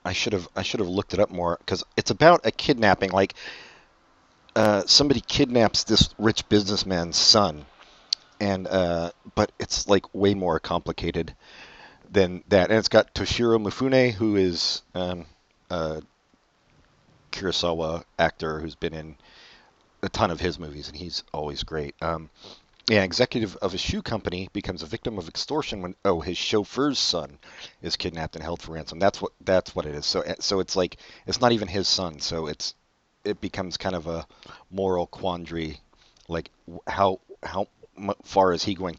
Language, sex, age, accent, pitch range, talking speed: English, male, 40-59, American, 80-105 Hz, 170 wpm